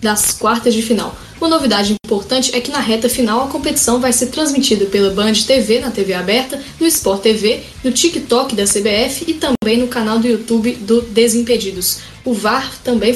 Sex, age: female, 10-29